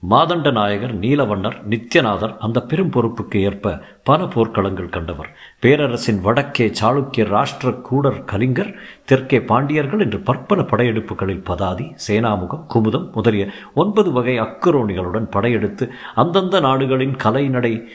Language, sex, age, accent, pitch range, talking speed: Tamil, male, 50-69, native, 100-135 Hz, 110 wpm